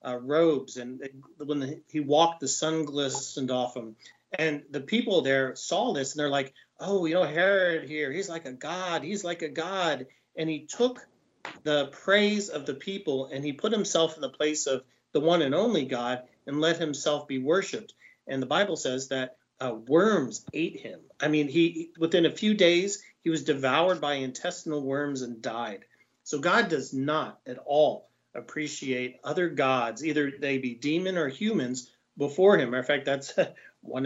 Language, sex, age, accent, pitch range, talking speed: English, male, 40-59, American, 135-165 Hz, 185 wpm